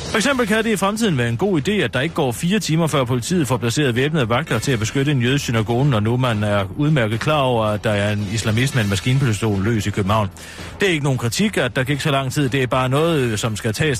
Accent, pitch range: native, 115-160 Hz